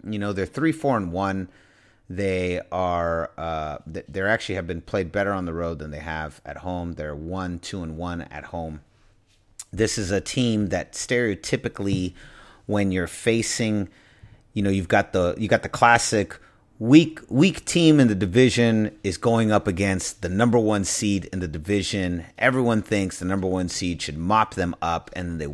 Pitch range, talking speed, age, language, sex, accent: 90-110 Hz, 180 wpm, 30-49, English, male, American